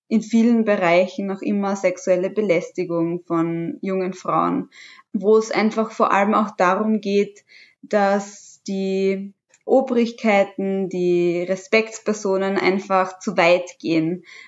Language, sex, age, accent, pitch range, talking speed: German, female, 20-39, German, 185-225 Hz, 110 wpm